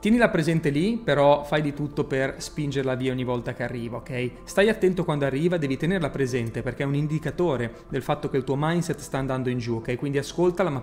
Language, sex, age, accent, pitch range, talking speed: Italian, male, 30-49, native, 135-185 Hz, 220 wpm